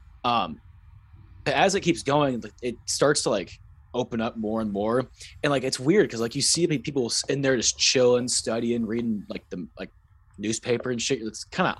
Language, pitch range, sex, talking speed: English, 110-135 Hz, male, 200 wpm